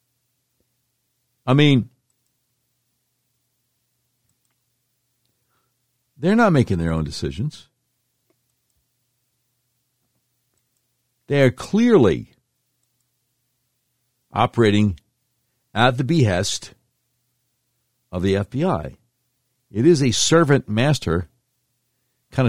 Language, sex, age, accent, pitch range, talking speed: English, male, 60-79, American, 115-125 Hz, 60 wpm